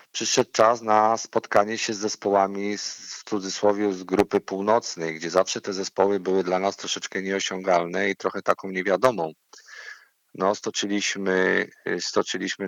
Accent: native